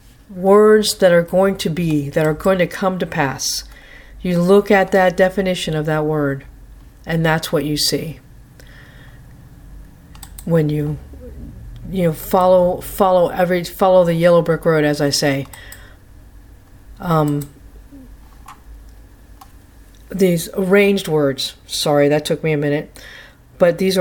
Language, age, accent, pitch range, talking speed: English, 50-69, American, 140-190 Hz, 130 wpm